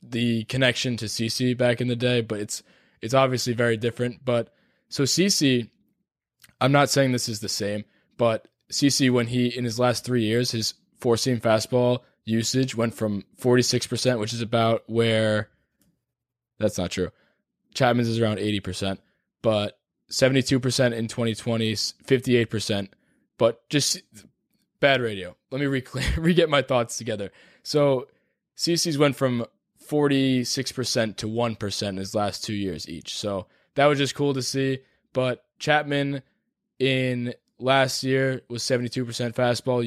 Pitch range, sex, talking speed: 115-135 Hz, male, 145 wpm